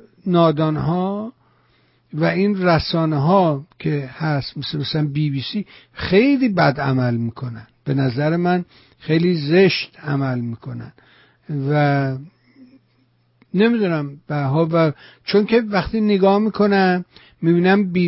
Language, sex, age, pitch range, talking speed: Persian, male, 60-79, 145-185 Hz, 105 wpm